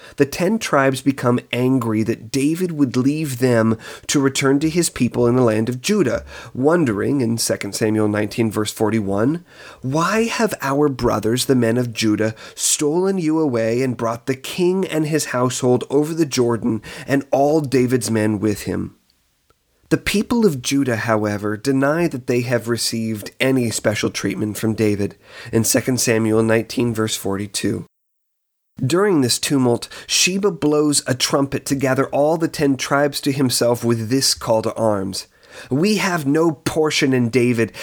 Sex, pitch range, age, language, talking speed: male, 110-145 Hz, 30-49, English, 160 wpm